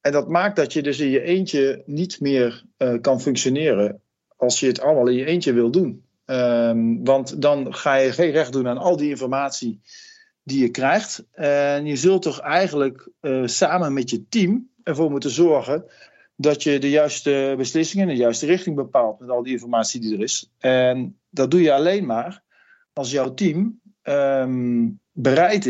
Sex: male